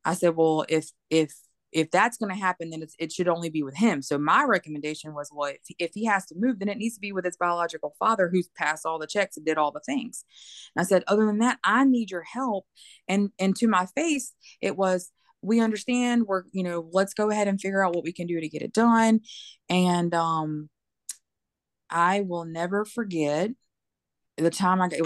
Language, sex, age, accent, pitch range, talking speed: English, female, 20-39, American, 165-205 Hz, 230 wpm